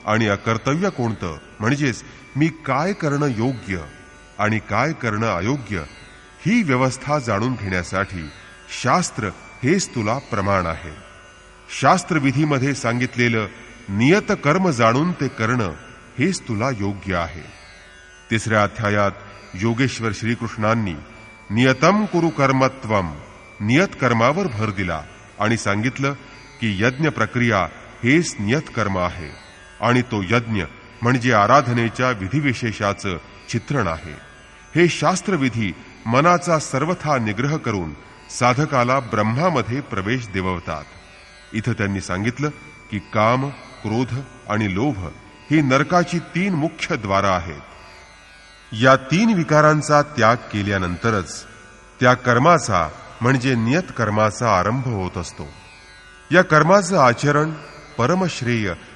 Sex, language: male, English